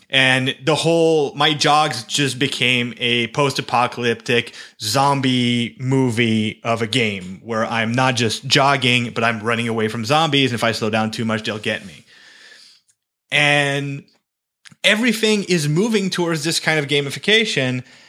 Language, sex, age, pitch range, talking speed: English, male, 30-49, 120-195 Hz, 150 wpm